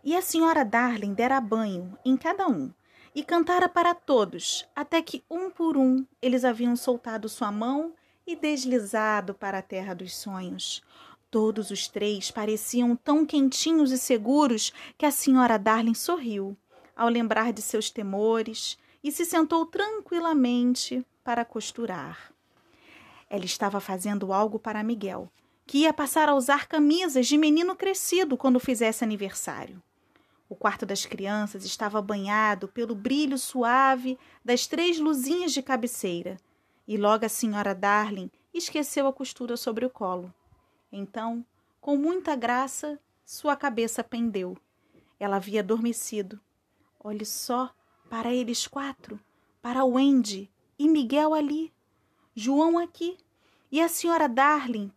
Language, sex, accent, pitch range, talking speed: Portuguese, female, Brazilian, 215-295 Hz, 135 wpm